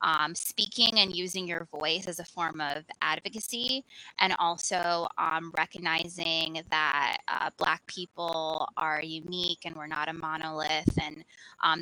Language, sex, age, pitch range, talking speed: English, female, 20-39, 165-200 Hz, 140 wpm